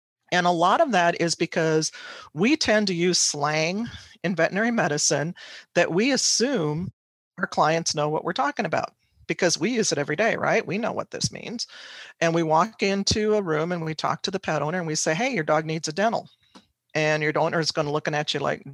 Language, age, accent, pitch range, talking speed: English, 40-59, American, 155-205 Hz, 220 wpm